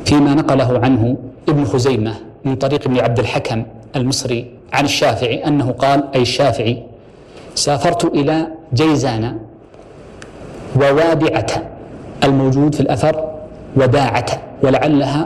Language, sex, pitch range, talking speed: Arabic, male, 130-150 Hz, 100 wpm